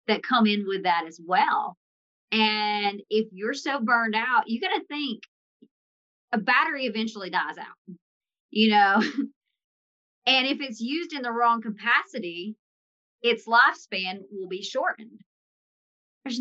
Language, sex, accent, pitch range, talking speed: English, male, American, 205-265 Hz, 140 wpm